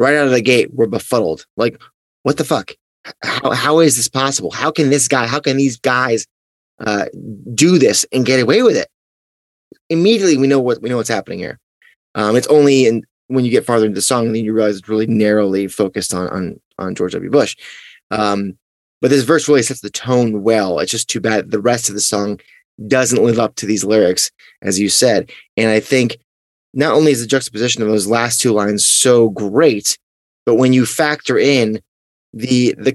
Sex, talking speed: male, 210 wpm